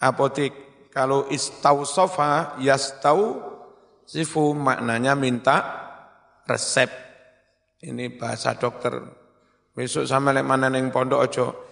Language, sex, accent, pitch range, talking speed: Indonesian, male, native, 125-145 Hz, 90 wpm